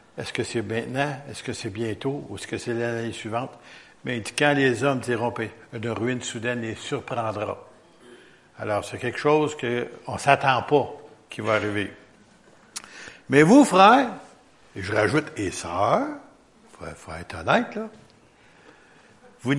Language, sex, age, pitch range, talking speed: French, male, 70-89, 120-190 Hz, 145 wpm